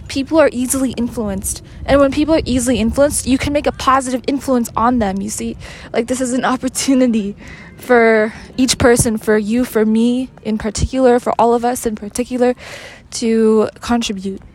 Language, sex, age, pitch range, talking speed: English, female, 20-39, 225-260 Hz, 175 wpm